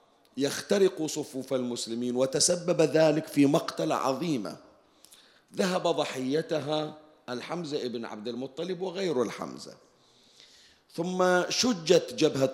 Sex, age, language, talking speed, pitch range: male, 40-59, Arabic, 90 wpm, 130-175 Hz